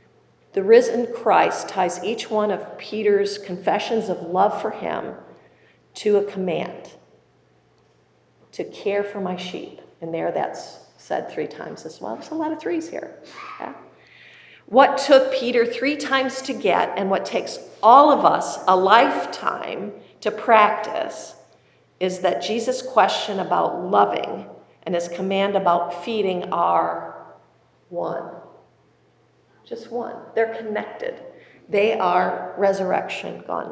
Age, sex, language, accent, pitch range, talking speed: 50-69, female, English, American, 185-235 Hz, 130 wpm